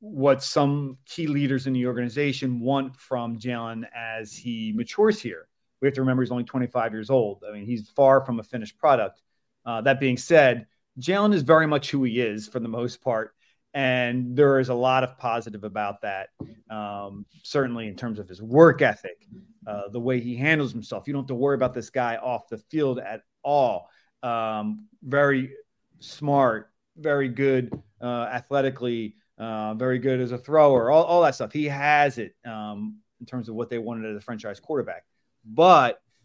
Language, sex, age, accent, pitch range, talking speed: English, male, 30-49, American, 115-140 Hz, 190 wpm